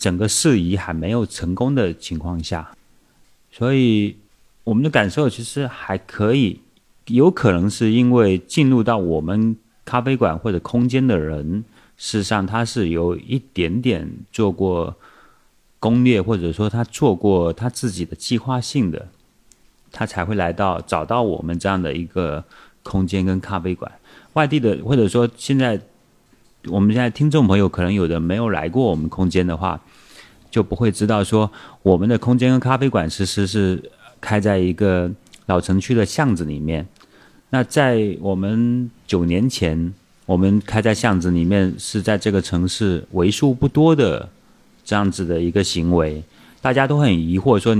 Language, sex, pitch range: Chinese, male, 90-120 Hz